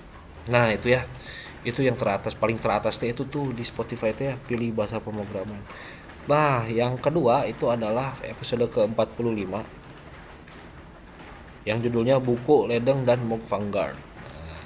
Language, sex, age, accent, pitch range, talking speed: Indonesian, male, 20-39, native, 105-125 Hz, 125 wpm